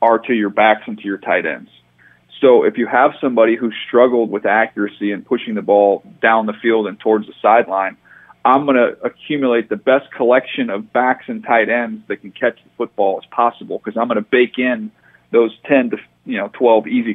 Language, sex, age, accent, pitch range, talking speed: English, male, 40-59, American, 105-125 Hz, 215 wpm